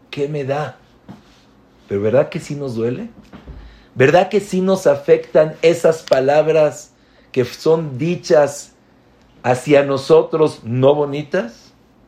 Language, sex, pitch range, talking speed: English, male, 120-155 Hz, 115 wpm